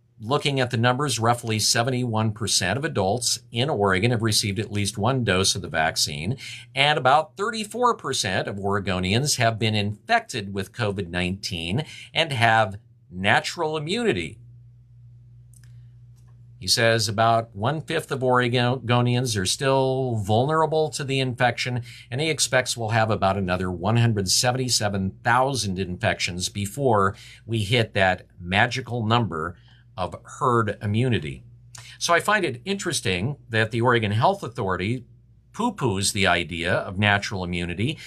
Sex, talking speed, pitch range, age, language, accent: male, 125 wpm, 105-130 Hz, 50-69, English, American